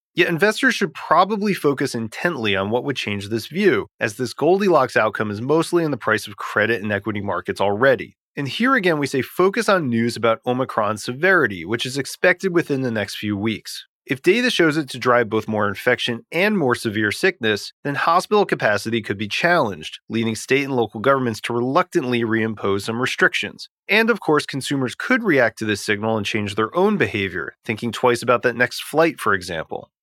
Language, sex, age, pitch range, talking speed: English, male, 30-49, 110-155 Hz, 195 wpm